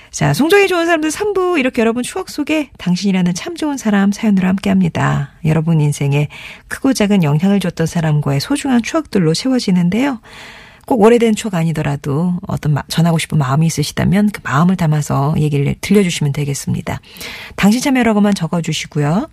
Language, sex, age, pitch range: Korean, female, 40-59, 150-225 Hz